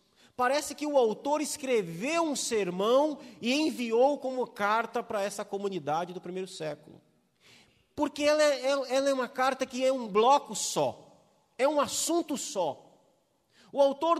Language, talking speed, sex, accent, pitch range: Portuguese, 145 wpm, male, Brazilian, 215-280 Hz